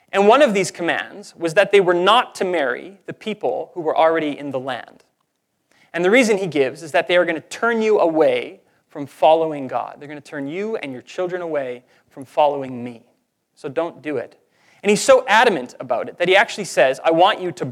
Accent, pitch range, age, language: American, 150-205 Hz, 30-49, English